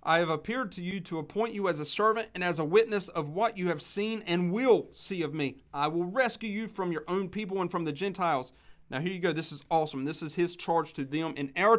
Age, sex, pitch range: 40-59, male, 150-195 Hz